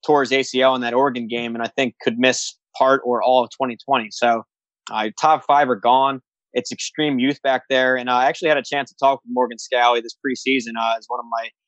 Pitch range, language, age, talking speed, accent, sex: 120-135 Hz, English, 20-39, 235 wpm, American, male